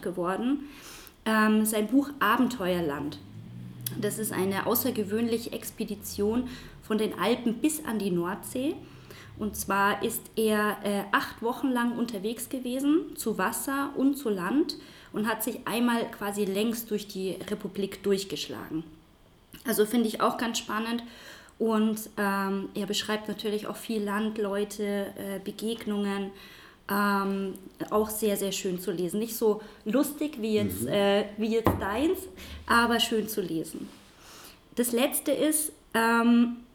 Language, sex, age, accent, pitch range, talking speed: German, female, 20-39, German, 205-245 Hz, 135 wpm